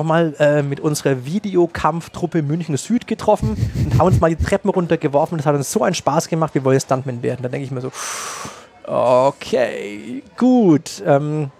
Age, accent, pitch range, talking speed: 30-49, German, 125-160 Hz, 180 wpm